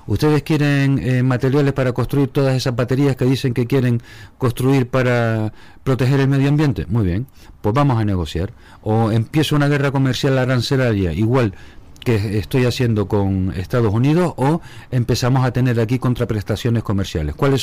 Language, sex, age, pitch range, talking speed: Spanish, male, 40-59, 110-135 Hz, 155 wpm